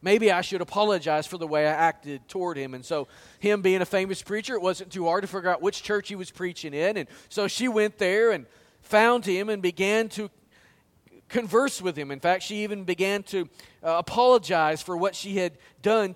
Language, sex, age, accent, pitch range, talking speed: English, male, 40-59, American, 160-205 Hz, 210 wpm